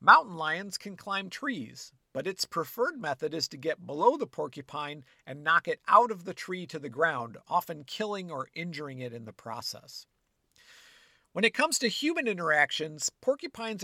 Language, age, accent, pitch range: English, 50-69, American, 145-195 Hz